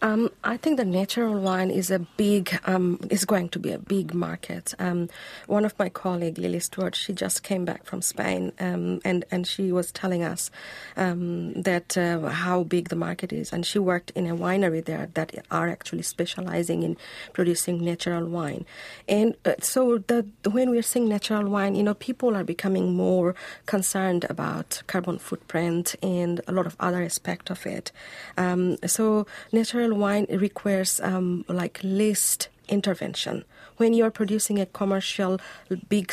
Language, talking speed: English, 170 wpm